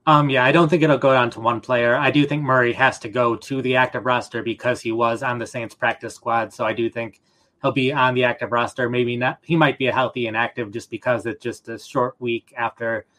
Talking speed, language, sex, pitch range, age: 260 wpm, English, male, 115-135 Hz, 20-39